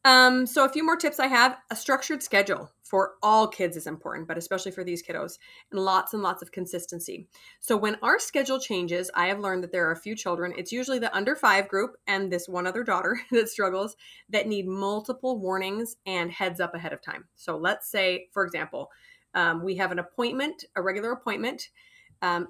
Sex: female